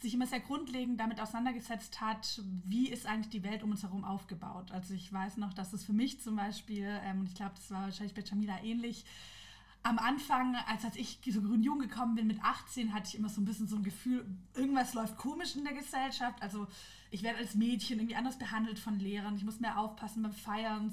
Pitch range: 210-245 Hz